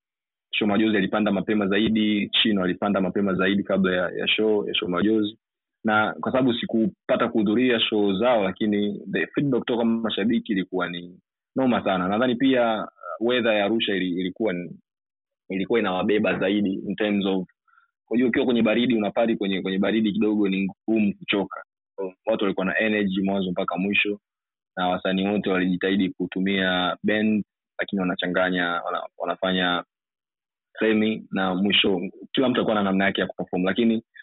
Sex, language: male, Swahili